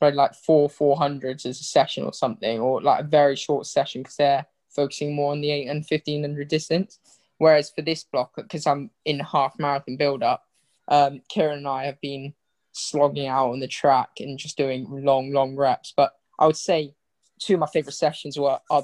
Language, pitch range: English, 135-150 Hz